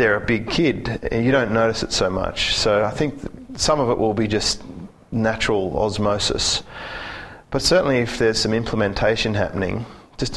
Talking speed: 175 wpm